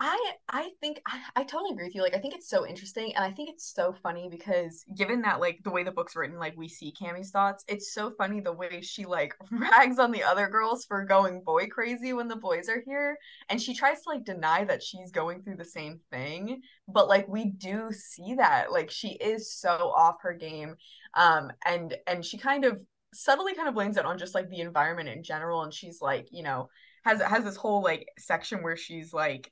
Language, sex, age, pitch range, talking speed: English, female, 20-39, 170-225 Hz, 230 wpm